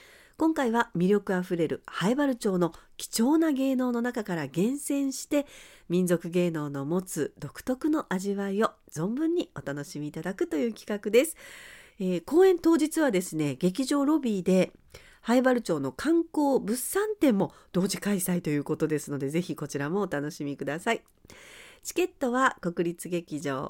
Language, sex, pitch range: Japanese, female, 165-265 Hz